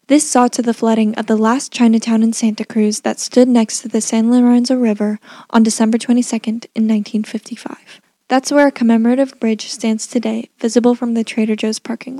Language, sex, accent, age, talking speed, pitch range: English, female, American, 10-29, 185 wpm, 225-250 Hz